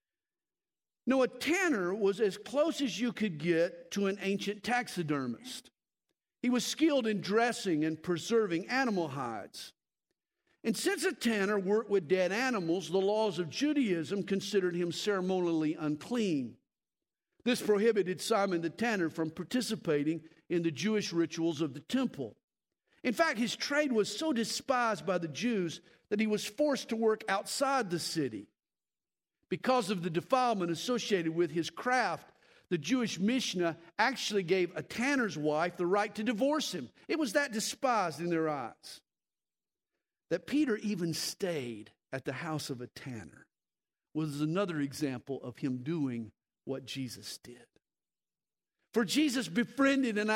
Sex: male